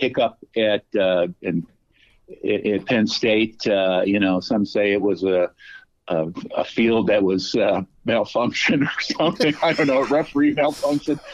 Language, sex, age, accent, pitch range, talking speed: English, male, 50-69, American, 100-120 Hz, 150 wpm